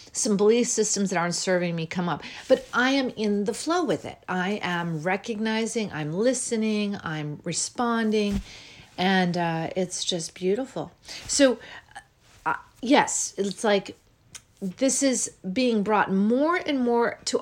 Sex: female